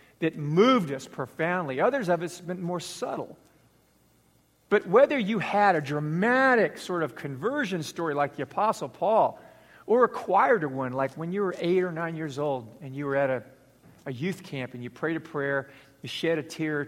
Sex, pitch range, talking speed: male, 135-180 Hz, 200 wpm